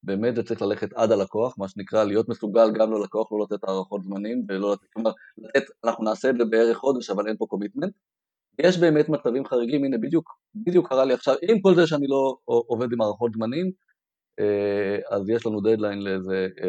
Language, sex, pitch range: Hebrew, male, 100-145 Hz